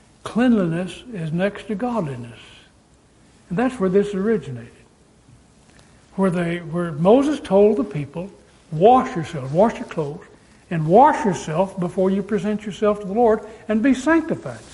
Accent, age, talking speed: American, 60-79, 145 wpm